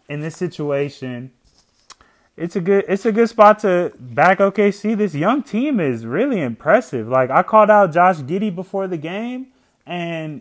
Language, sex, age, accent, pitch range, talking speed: English, male, 20-39, American, 130-180 Hz, 175 wpm